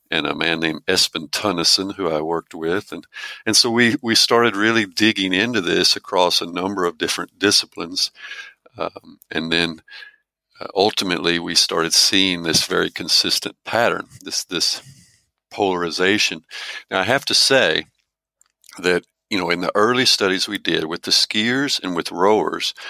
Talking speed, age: 160 wpm, 50-69